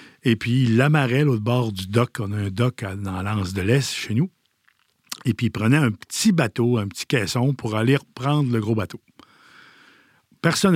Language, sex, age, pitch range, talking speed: French, male, 50-69, 105-140 Hz, 195 wpm